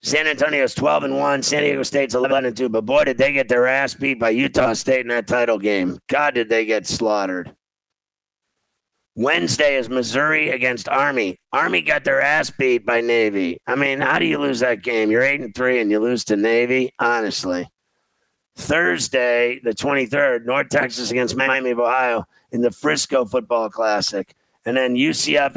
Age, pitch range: 50-69, 115-135 Hz